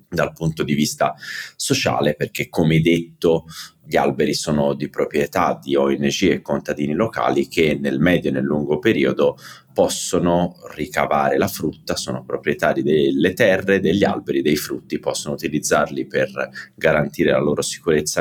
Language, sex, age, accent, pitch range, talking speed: Italian, male, 30-49, native, 70-85 Hz, 145 wpm